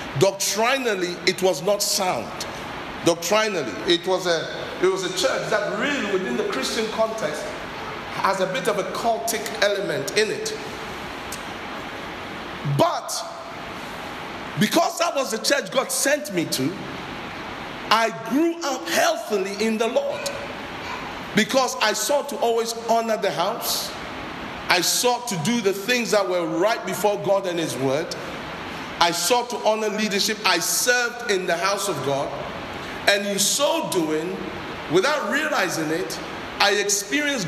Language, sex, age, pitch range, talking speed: English, male, 50-69, 180-245 Hz, 140 wpm